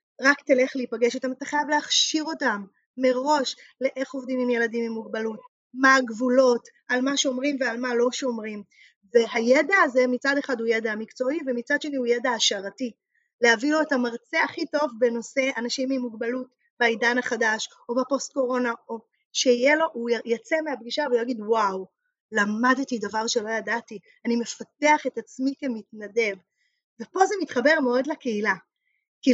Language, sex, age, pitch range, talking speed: Hebrew, female, 20-39, 230-280 Hz, 150 wpm